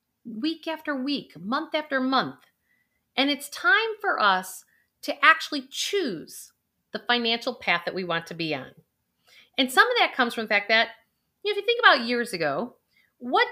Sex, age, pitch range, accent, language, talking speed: female, 40-59, 200-300 Hz, American, English, 180 wpm